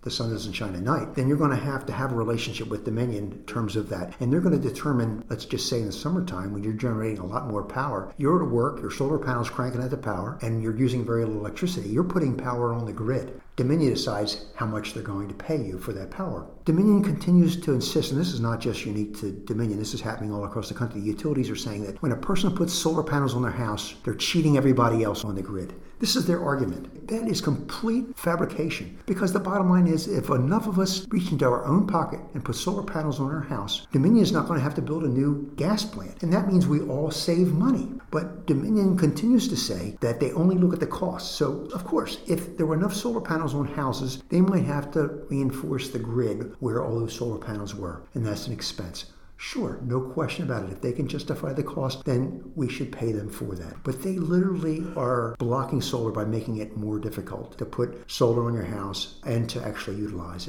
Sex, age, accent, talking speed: male, 50-69, American, 235 wpm